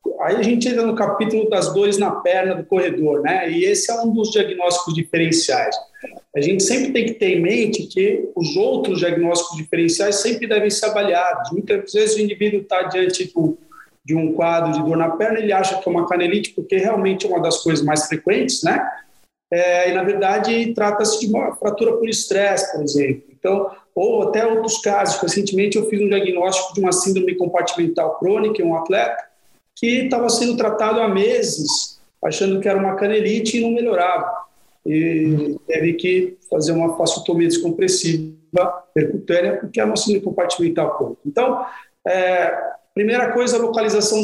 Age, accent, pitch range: 40-59, Brazilian, 165-220 Hz